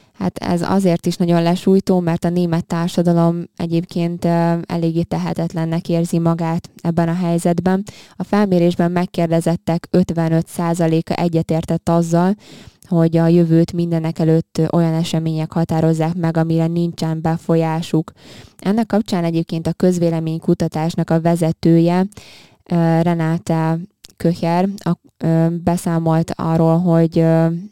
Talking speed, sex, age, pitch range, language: 105 wpm, female, 20-39, 160-175 Hz, Hungarian